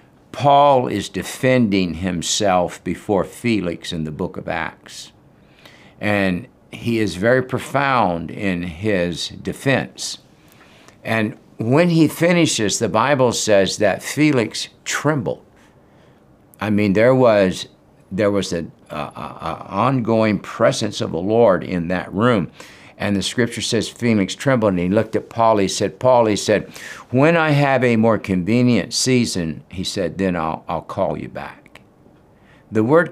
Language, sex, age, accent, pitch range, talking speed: English, male, 60-79, American, 95-130 Hz, 145 wpm